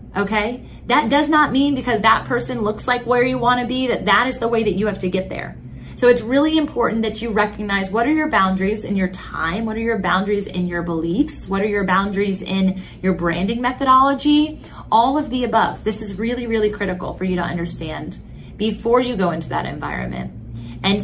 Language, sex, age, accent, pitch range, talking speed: English, female, 20-39, American, 170-210 Hz, 215 wpm